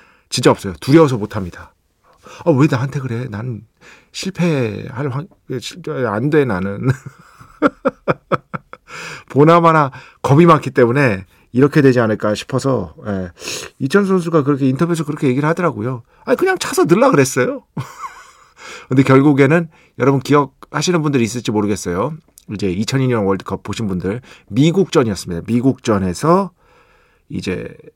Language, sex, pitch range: Korean, male, 110-150 Hz